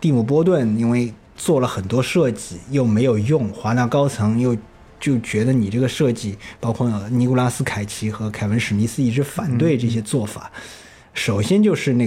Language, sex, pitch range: Chinese, male, 110-135 Hz